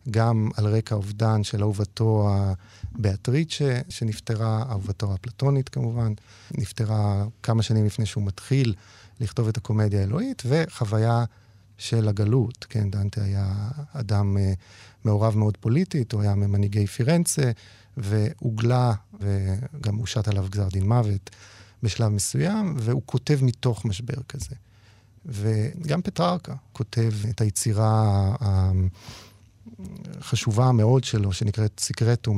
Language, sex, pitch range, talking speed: Hebrew, male, 105-125 Hz, 110 wpm